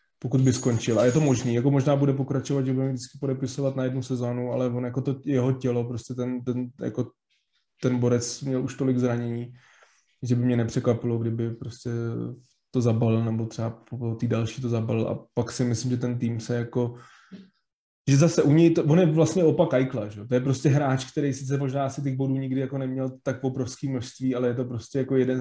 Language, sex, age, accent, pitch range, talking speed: Czech, male, 20-39, native, 120-135 Hz, 210 wpm